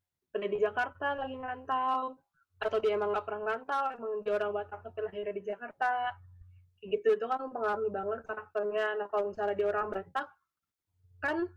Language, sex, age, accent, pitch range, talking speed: Indonesian, female, 10-29, native, 205-255 Hz, 170 wpm